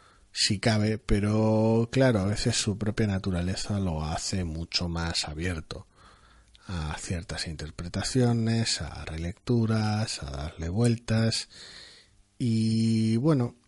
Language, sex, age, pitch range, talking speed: Spanish, male, 30-49, 90-115 Hz, 105 wpm